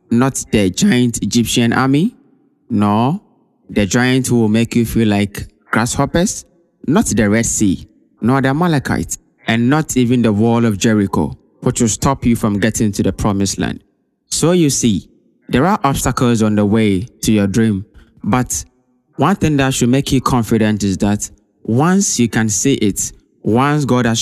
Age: 20-39